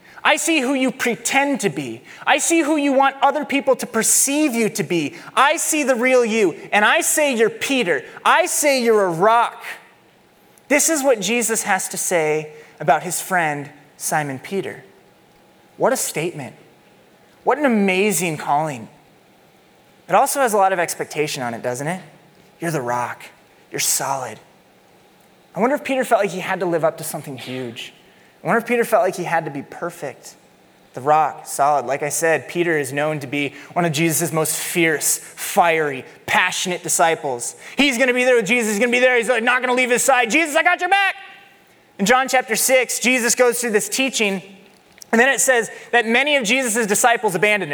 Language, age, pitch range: English, 20-39, 165-255 Hz